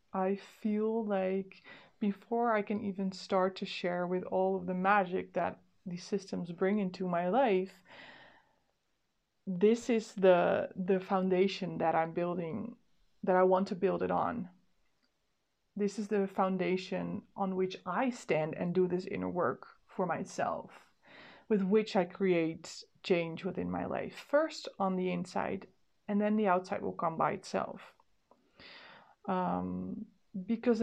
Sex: female